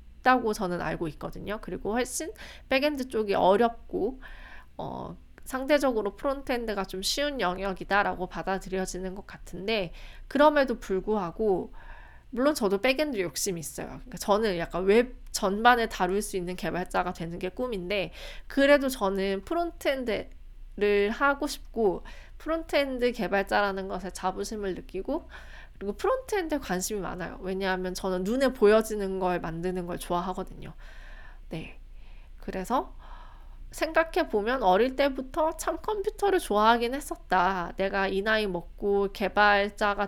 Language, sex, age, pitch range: Korean, female, 20-39, 185-280 Hz